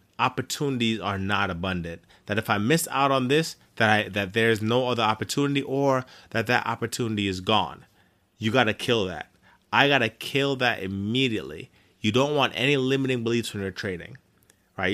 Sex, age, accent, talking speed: male, 30-49, American, 180 wpm